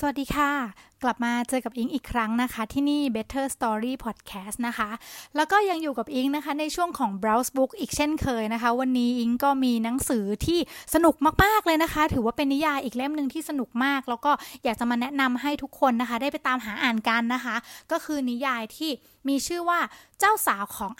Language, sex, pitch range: English, female, 235-295 Hz